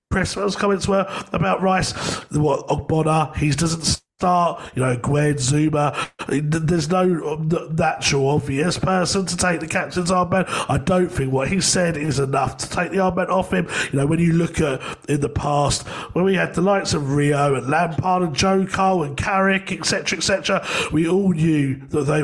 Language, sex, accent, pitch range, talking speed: English, male, British, 145-185 Hz, 185 wpm